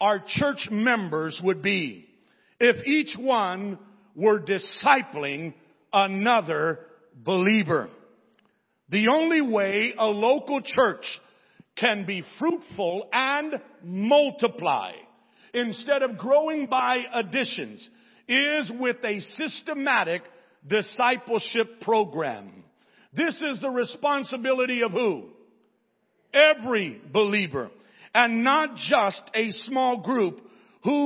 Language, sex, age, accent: English, male, 50-69, American